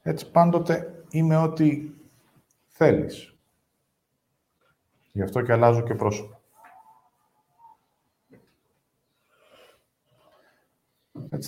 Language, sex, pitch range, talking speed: Greek, male, 100-130 Hz, 65 wpm